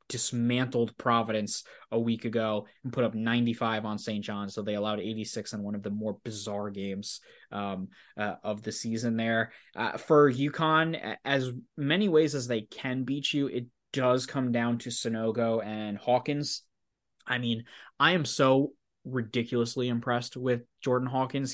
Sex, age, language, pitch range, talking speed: male, 20-39, English, 110-145 Hz, 160 wpm